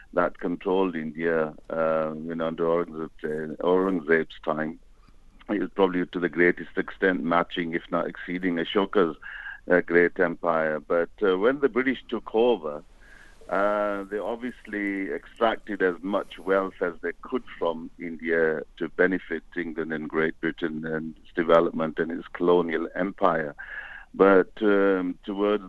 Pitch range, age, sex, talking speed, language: 80-95 Hz, 60-79, male, 140 wpm, English